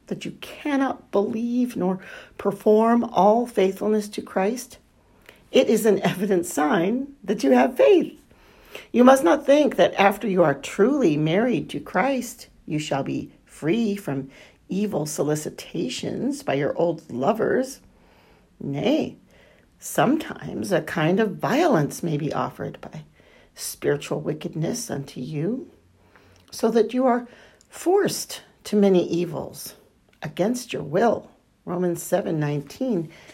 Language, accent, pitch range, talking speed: English, American, 165-230 Hz, 125 wpm